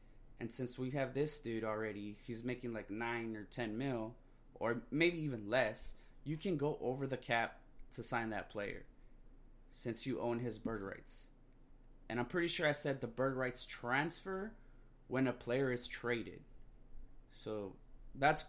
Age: 20-39